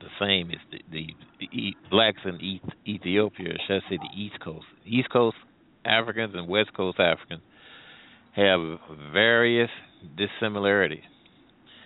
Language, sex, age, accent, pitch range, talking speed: English, male, 50-69, American, 95-115 Hz, 130 wpm